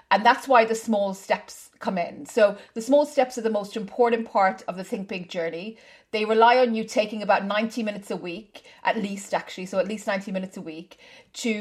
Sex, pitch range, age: female, 195-230 Hz, 30-49